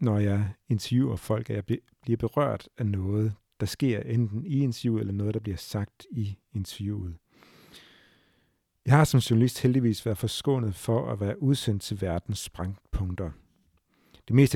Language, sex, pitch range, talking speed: Danish, male, 105-130 Hz, 155 wpm